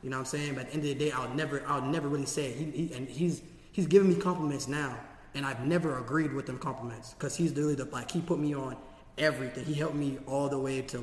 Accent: American